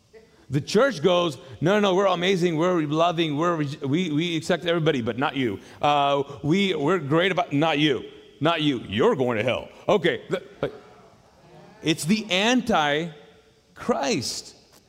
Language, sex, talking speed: English, male, 140 wpm